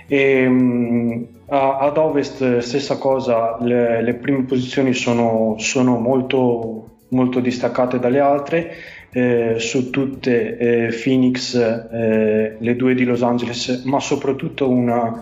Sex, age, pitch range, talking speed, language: male, 20-39, 115-135 Hz, 120 wpm, Italian